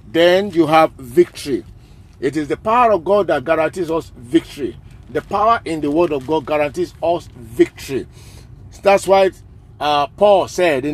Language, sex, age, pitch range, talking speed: English, male, 50-69, 120-185 Hz, 165 wpm